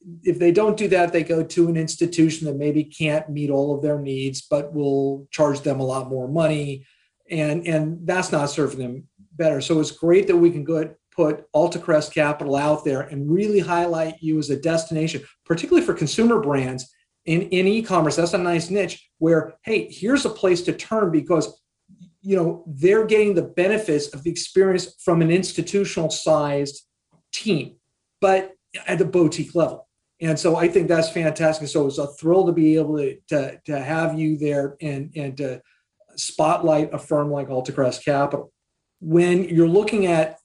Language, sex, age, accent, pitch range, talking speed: English, male, 50-69, American, 145-170 Hz, 180 wpm